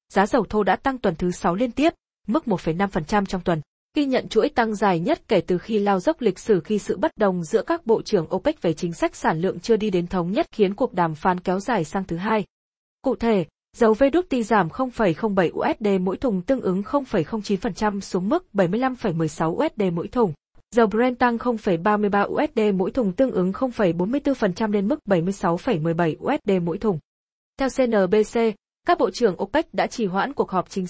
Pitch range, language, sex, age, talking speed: 185-235 Hz, Vietnamese, female, 20-39, 195 wpm